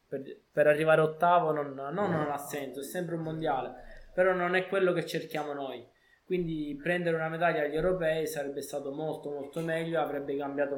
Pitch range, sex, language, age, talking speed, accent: 125-150 Hz, male, Italian, 20-39, 185 wpm, native